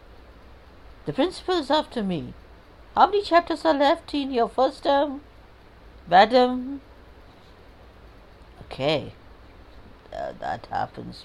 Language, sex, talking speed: Hindi, female, 95 wpm